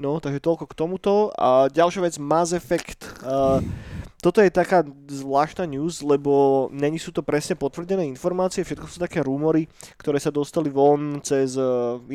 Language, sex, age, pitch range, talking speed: Slovak, male, 20-39, 130-160 Hz, 165 wpm